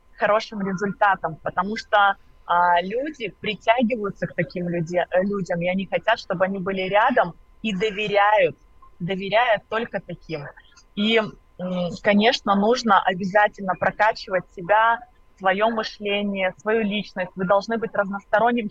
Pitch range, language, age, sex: 190-225 Hz, Russian, 20-39, female